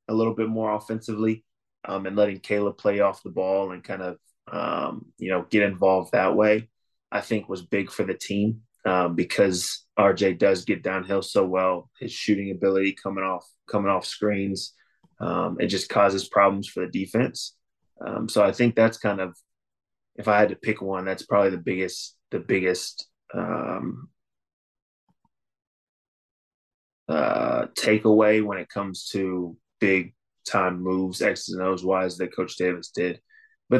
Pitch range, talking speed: 95-105 Hz, 165 wpm